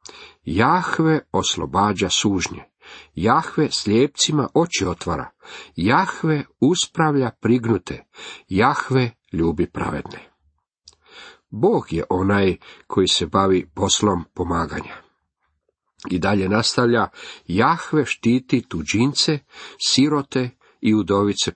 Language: Croatian